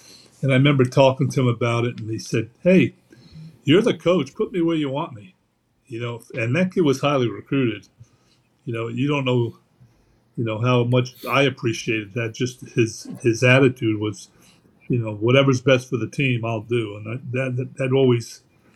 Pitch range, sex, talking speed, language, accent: 115-135 Hz, male, 195 wpm, English, American